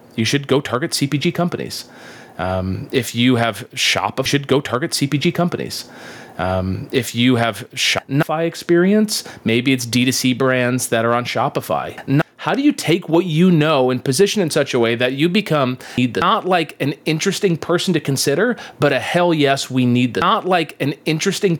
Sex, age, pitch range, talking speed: male, 30-49, 125-165 Hz, 185 wpm